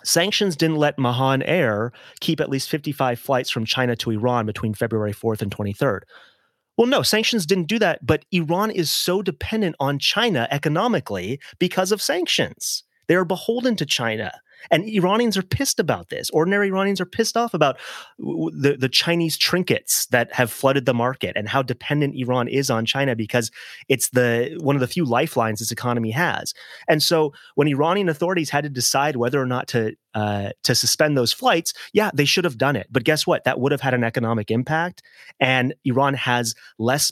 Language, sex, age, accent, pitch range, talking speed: English, male, 30-49, American, 115-155 Hz, 190 wpm